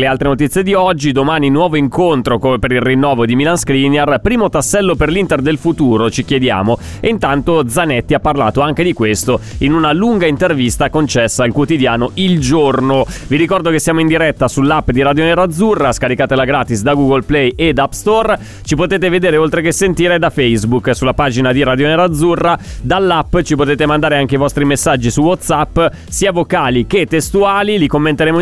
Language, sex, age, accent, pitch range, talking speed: Italian, male, 30-49, native, 125-165 Hz, 185 wpm